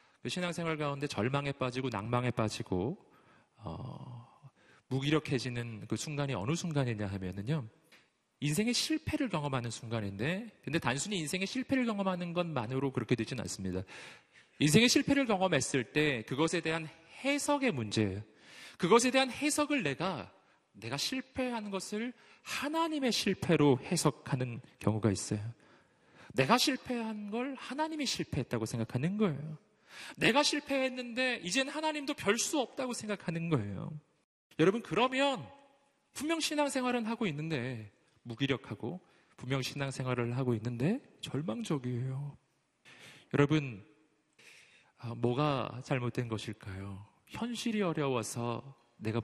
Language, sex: Korean, male